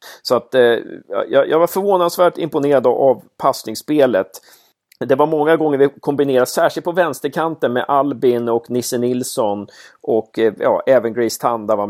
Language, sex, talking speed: Swedish, male, 155 wpm